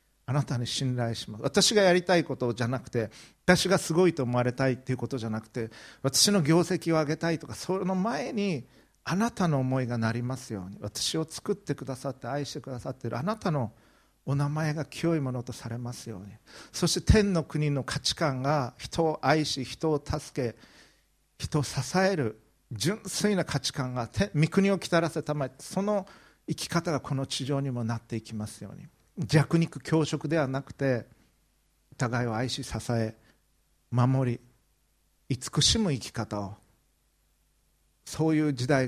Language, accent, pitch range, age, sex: Japanese, native, 120-165 Hz, 50-69, male